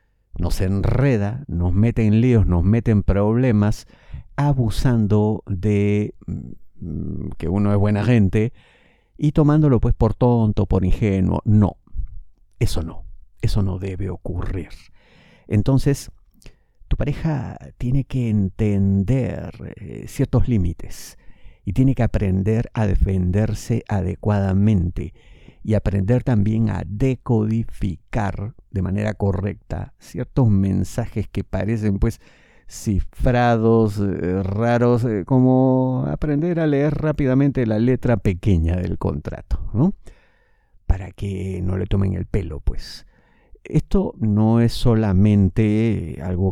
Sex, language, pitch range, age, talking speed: male, Spanish, 95-115 Hz, 50-69, 110 wpm